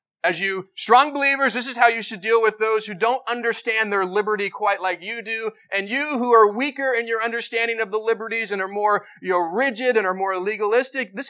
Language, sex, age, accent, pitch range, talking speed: English, male, 30-49, American, 200-255 Hz, 220 wpm